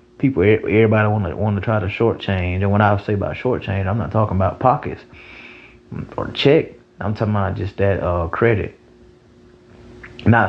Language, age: English, 20-39